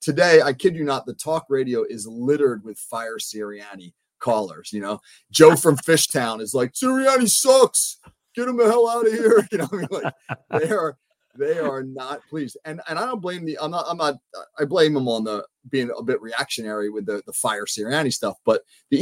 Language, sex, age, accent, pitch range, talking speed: English, male, 30-49, American, 120-170 Hz, 215 wpm